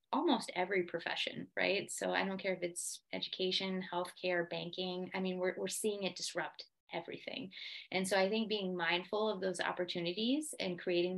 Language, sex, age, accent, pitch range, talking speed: English, female, 20-39, American, 180-210 Hz, 170 wpm